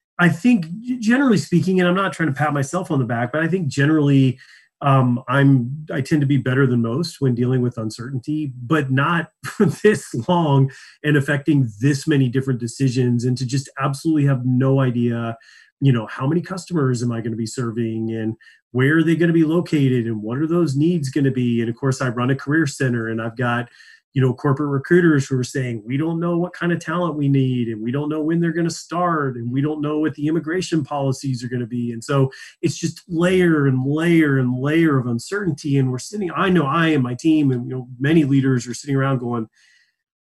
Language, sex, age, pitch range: English, male, 30-49, 125-160 Hz